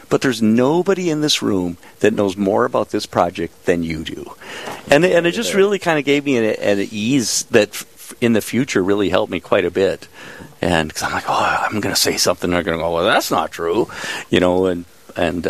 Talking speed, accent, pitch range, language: 225 wpm, American, 85-115 Hz, English